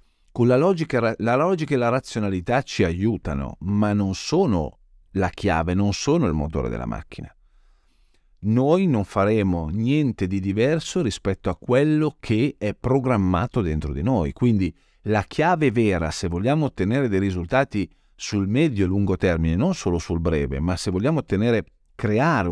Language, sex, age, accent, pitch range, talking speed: Italian, male, 40-59, native, 90-120 Hz, 155 wpm